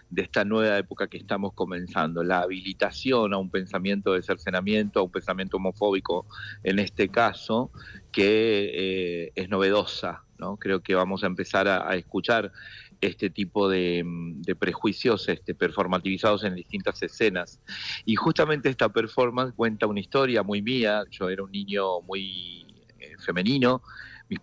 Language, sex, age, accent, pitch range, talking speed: Spanish, male, 40-59, Argentinian, 95-110 Hz, 150 wpm